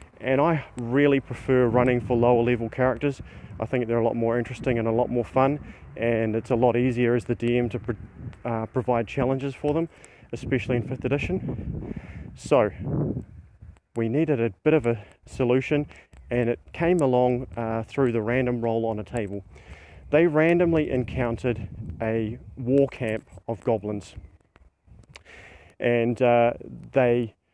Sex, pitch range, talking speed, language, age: male, 115-135 Hz, 155 wpm, English, 30-49